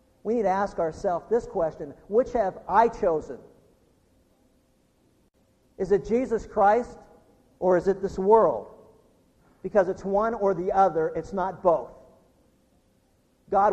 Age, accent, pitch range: 50-69, American, 190-230 Hz